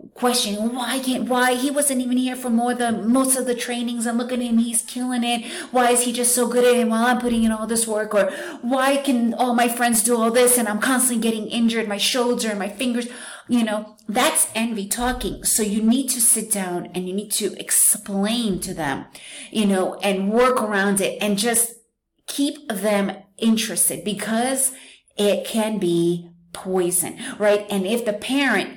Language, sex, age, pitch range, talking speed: English, female, 30-49, 190-245 Hz, 200 wpm